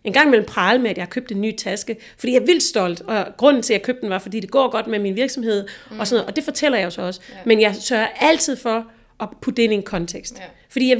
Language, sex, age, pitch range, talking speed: Danish, female, 30-49, 195-255 Hz, 295 wpm